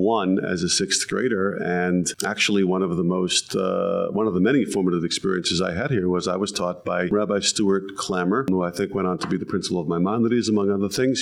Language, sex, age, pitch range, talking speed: English, male, 40-59, 90-105 Hz, 230 wpm